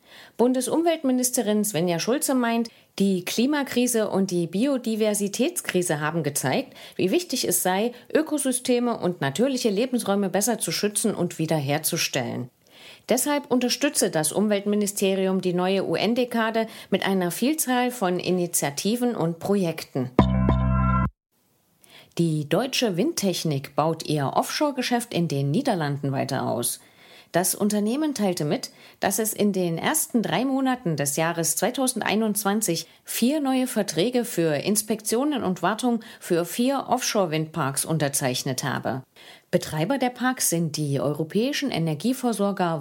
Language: English